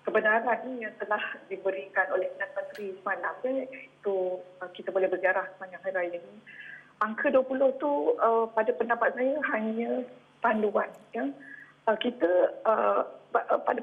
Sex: female